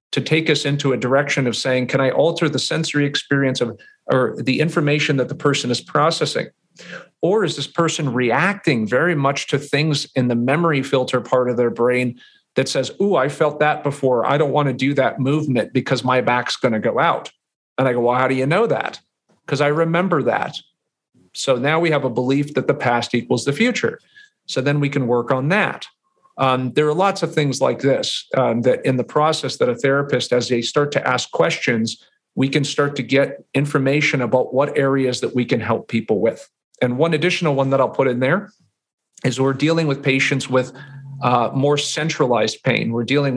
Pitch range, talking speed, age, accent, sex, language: 125-150 Hz, 205 wpm, 40-59, American, male, English